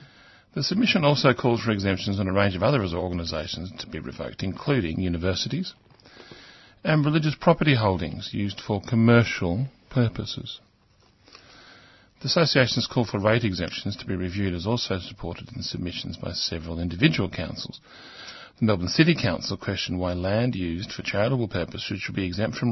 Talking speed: 155 wpm